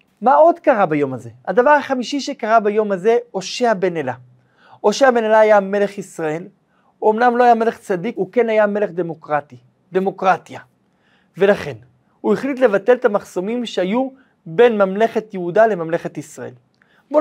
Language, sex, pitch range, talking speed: Hebrew, male, 180-230 Hz, 155 wpm